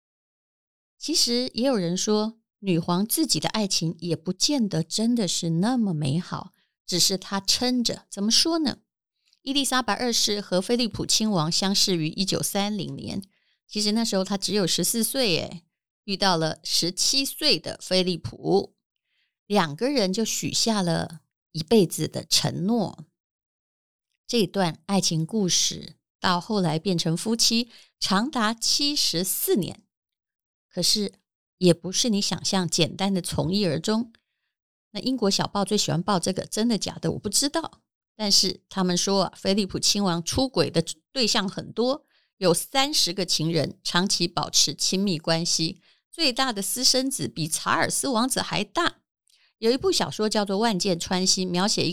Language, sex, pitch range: Chinese, female, 170-220 Hz